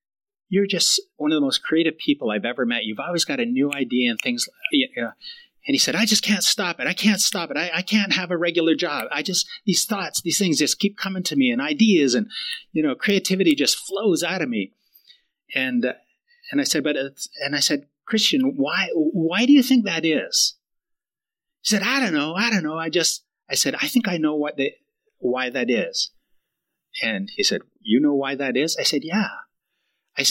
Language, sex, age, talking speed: English, male, 30-49, 220 wpm